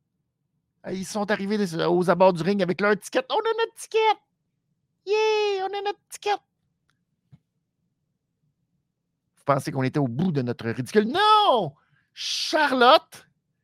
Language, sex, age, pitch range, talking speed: French, male, 50-69, 145-230 Hz, 140 wpm